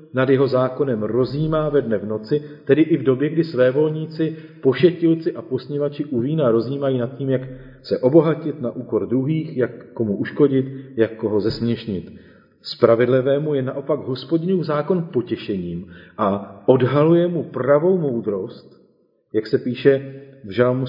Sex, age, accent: male, 40-59, native